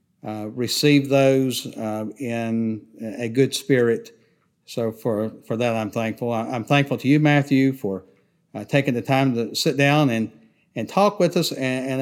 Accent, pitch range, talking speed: American, 115-140 Hz, 170 wpm